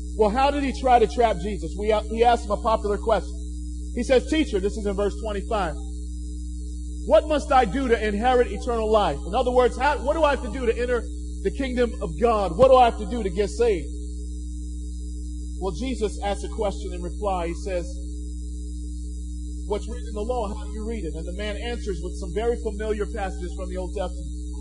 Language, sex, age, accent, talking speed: English, male, 40-59, American, 210 wpm